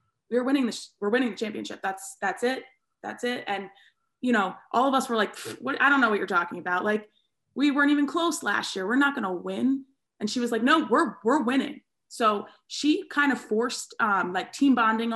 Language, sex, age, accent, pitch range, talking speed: English, female, 20-39, American, 205-255 Hz, 220 wpm